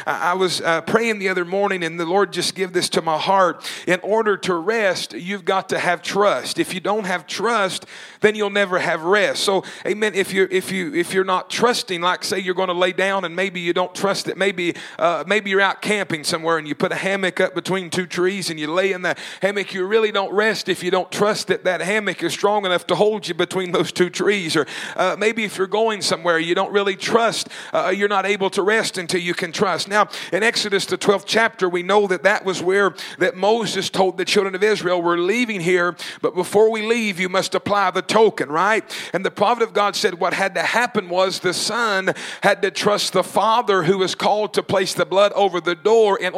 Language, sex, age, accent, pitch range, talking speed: English, male, 40-59, American, 180-210 Hz, 235 wpm